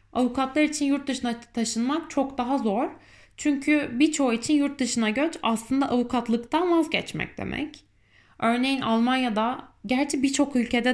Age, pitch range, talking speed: 20-39, 210-280 Hz, 125 wpm